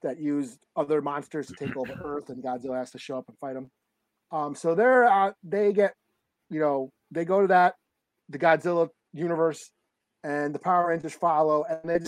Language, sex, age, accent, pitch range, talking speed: English, male, 30-49, American, 140-175 Hz, 195 wpm